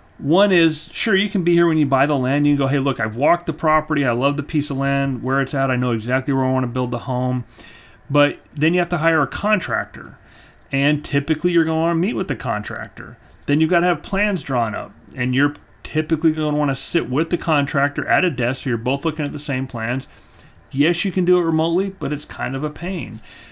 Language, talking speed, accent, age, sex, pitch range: English, 255 wpm, American, 40-59, male, 130-165 Hz